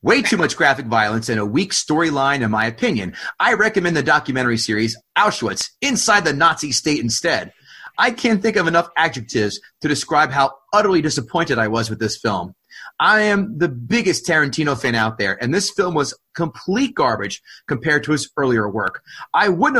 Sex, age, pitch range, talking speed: male, 30-49, 130-200 Hz, 180 wpm